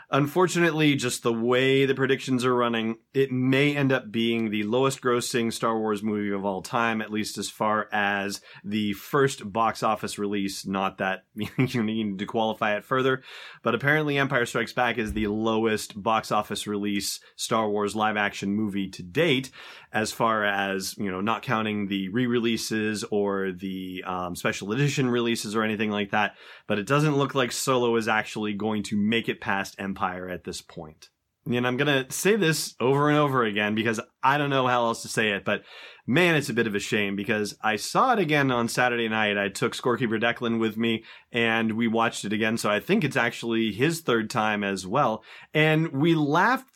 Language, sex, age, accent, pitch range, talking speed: English, male, 30-49, American, 105-130 Hz, 200 wpm